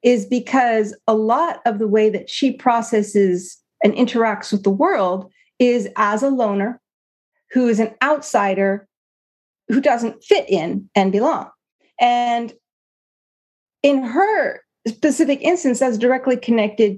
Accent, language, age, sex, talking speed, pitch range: American, English, 40-59, female, 130 wpm, 190-245 Hz